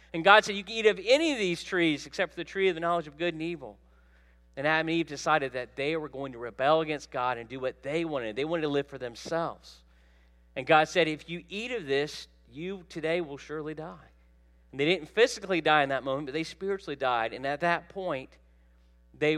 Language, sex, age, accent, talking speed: English, male, 40-59, American, 235 wpm